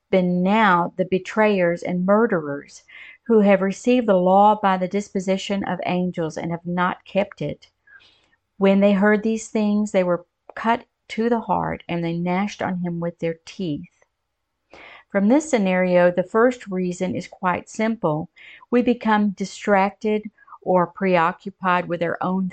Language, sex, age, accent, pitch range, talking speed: English, female, 50-69, American, 180-210 Hz, 150 wpm